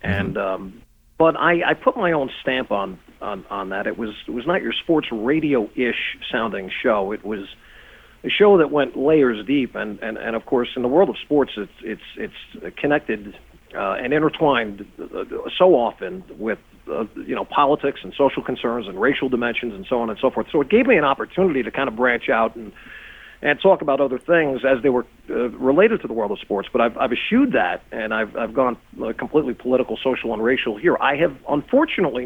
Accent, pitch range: American, 115-150 Hz